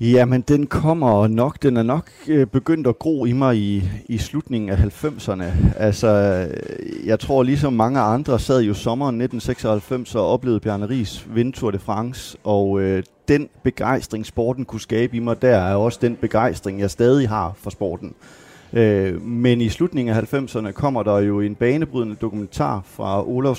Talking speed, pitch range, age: 175 wpm, 105-130 Hz, 30-49